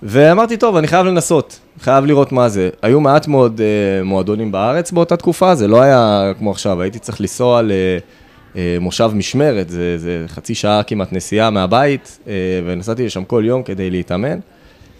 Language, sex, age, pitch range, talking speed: Hebrew, male, 20-39, 95-130 Hz, 165 wpm